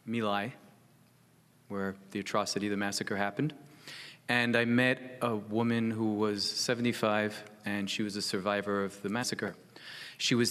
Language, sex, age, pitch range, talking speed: English, male, 30-49, 105-120 Hz, 145 wpm